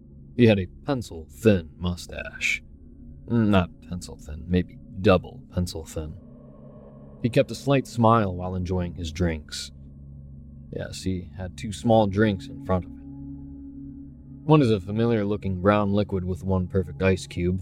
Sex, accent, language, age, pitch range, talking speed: male, American, English, 30-49, 75-110 Hz, 135 wpm